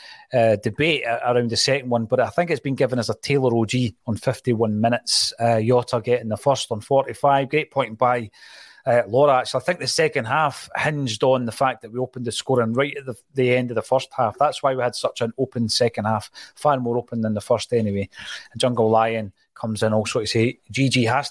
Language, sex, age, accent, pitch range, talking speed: English, male, 30-49, British, 115-140 Hz, 225 wpm